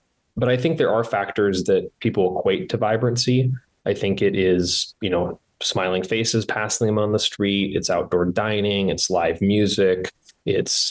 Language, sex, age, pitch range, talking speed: English, male, 20-39, 95-110 Hz, 170 wpm